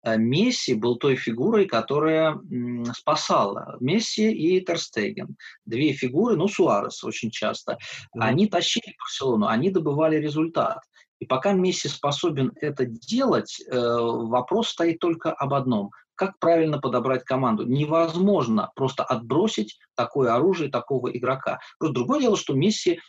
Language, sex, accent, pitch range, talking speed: Russian, male, native, 125-185 Hz, 125 wpm